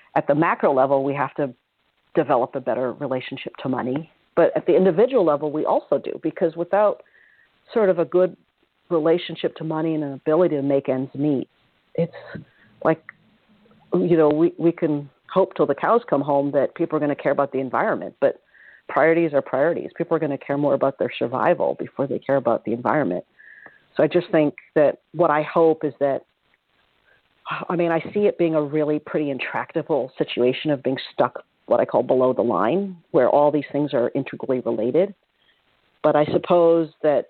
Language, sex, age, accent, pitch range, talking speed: English, female, 50-69, American, 140-165 Hz, 190 wpm